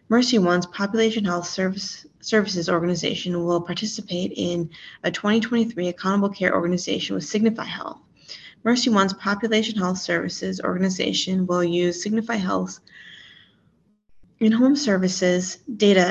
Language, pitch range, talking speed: English, 175-205 Hz, 115 wpm